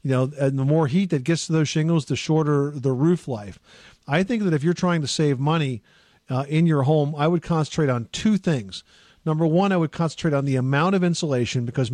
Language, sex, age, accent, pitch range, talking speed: English, male, 50-69, American, 130-160 Hz, 230 wpm